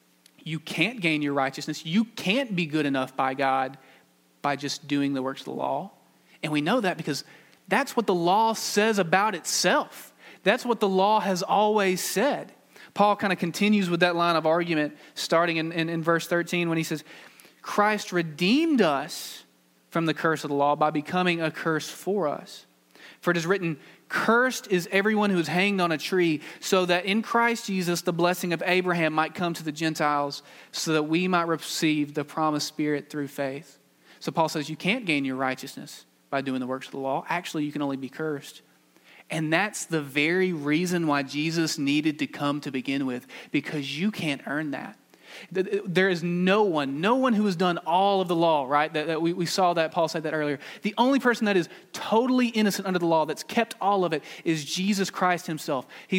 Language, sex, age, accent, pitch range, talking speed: English, male, 30-49, American, 150-190 Hz, 205 wpm